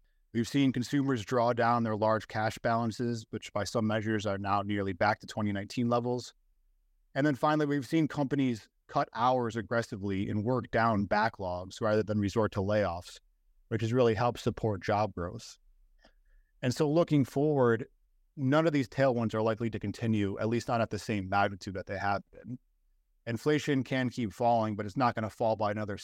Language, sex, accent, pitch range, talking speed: English, male, American, 100-125 Hz, 185 wpm